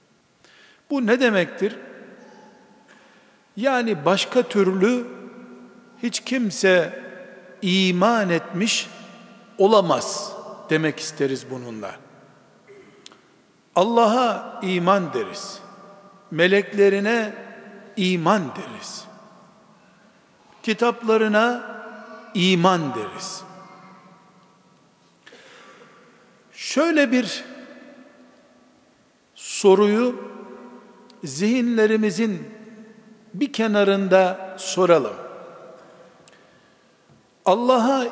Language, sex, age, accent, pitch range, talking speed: Turkish, male, 60-79, native, 195-245 Hz, 50 wpm